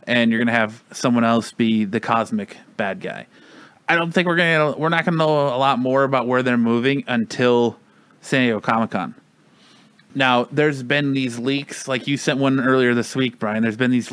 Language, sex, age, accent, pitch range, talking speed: English, male, 30-49, American, 120-155 Hz, 210 wpm